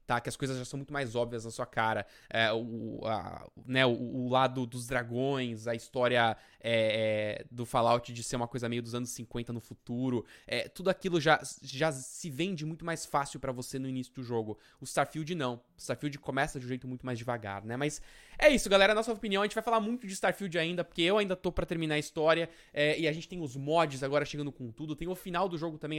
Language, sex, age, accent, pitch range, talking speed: Portuguese, male, 20-39, Brazilian, 125-165 Hz, 230 wpm